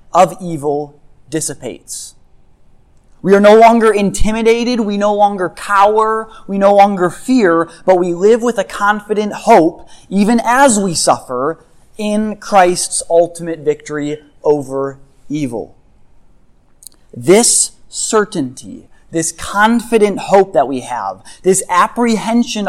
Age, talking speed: 20-39, 115 wpm